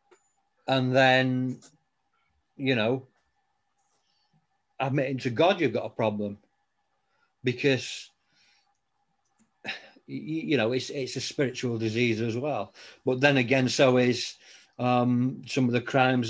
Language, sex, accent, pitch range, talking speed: English, male, British, 120-140 Hz, 115 wpm